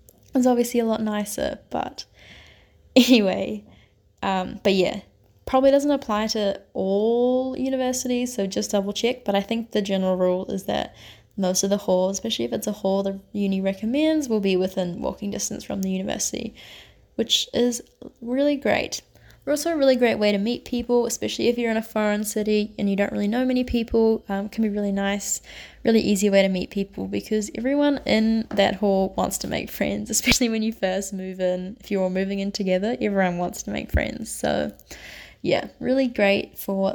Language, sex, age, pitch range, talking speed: English, female, 10-29, 195-245 Hz, 190 wpm